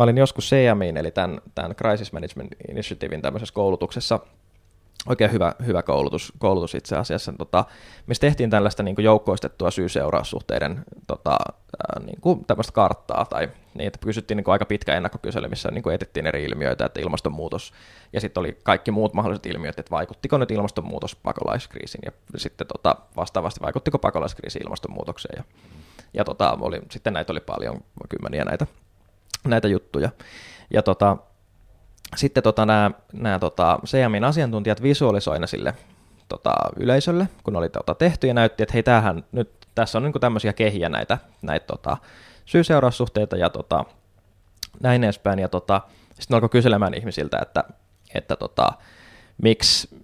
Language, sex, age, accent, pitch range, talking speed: Finnish, male, 20-39, native, 95-120 Hz, 140 wpm